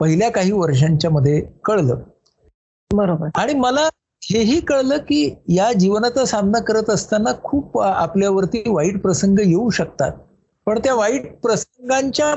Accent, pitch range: native, 160-225 Hz